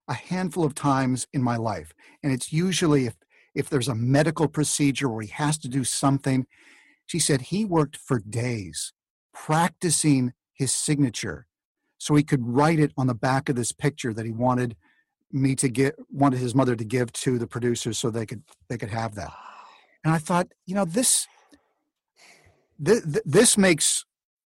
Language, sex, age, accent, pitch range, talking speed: English, male, 50-69, American, 125-160 Hz, 180 wpm